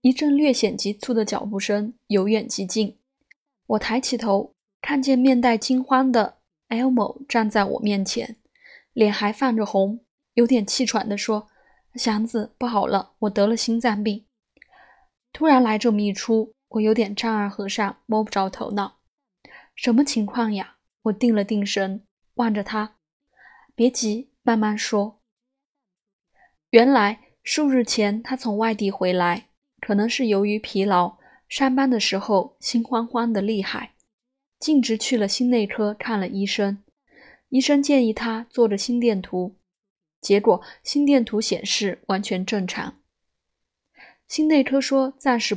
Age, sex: 20-39, female